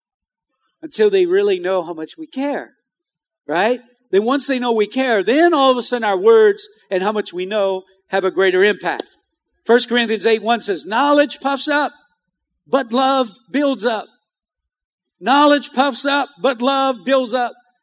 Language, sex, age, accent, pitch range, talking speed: English, male, 50-69, American, 205-280 Hz, 170 wpm